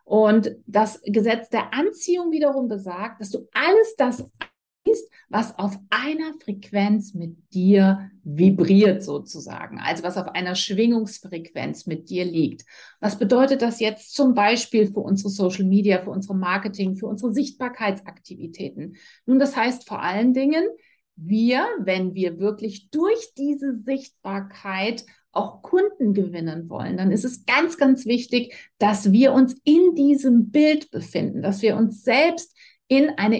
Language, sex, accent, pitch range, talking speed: German, female, German, 200-255 Hz, 145 wpm